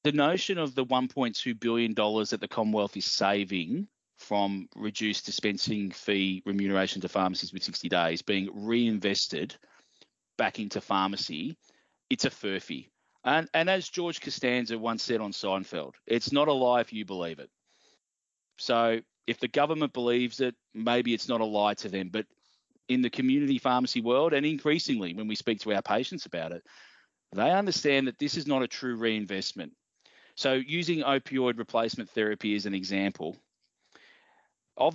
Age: 30-49